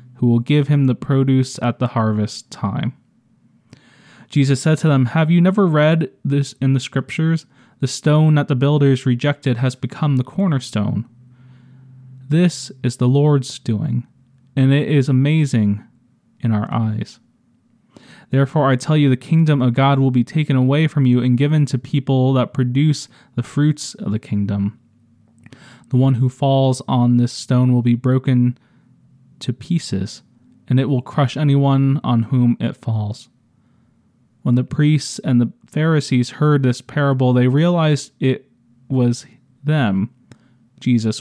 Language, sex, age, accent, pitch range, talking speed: English, male, 20-39, American, 120-140 Hz, 155 wpm